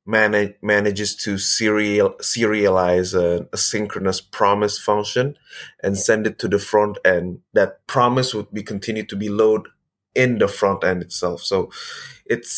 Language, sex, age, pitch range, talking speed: English, male, 20-39, 95-125 Hz, 155 wpm